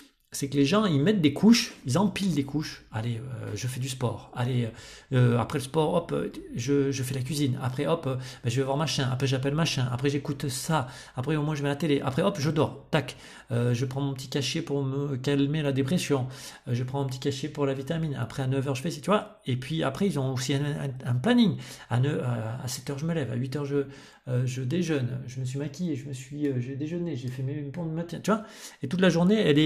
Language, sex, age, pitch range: French, male, 40-59, 125-150 Hz